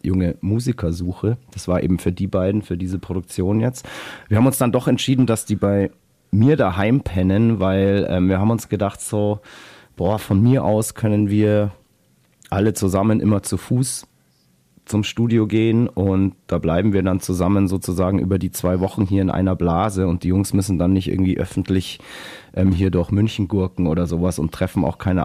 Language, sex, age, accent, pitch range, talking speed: German, male, 30-49, German, 90-105 Hz, 190 wpm